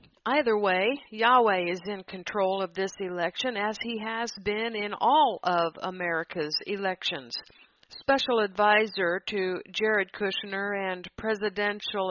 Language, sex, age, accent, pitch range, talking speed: English, female, 50-69, American, 185-230 Hz, 125 wpm